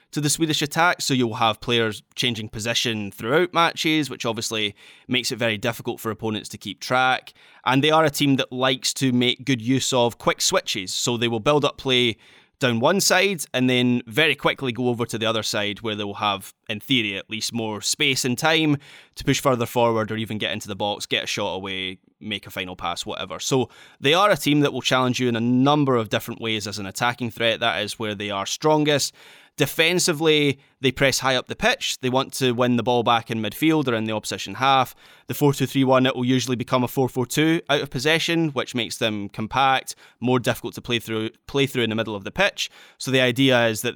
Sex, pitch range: male, 110-140 Hz